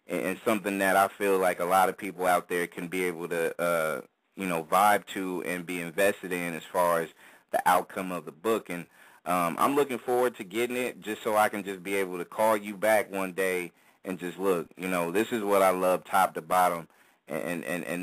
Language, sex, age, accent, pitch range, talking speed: English, male, 30-49, American, 90-105 Hz, 235 wpm